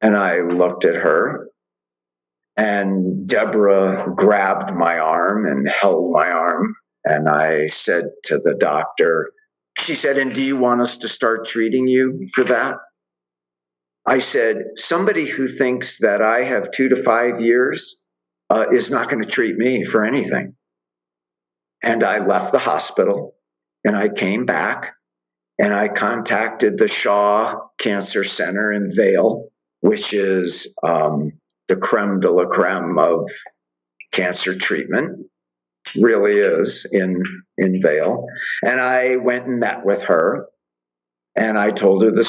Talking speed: 140 wpm